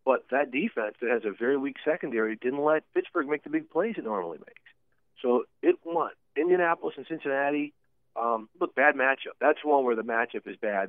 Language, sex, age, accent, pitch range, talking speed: English, male, 40-59, American, 110-135 Hz, 200 wpm